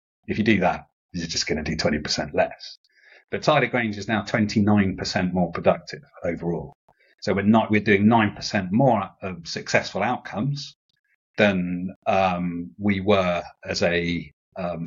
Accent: British